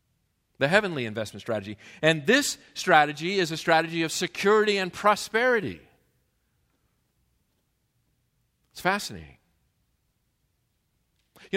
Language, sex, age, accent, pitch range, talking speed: English, male, 50-69, American, 115-180 Hz, 90 wpm